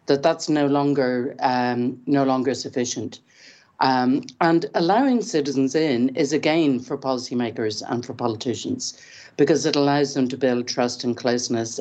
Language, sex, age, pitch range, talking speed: English, female, 60-79, 125-145 Hz, 140 wpm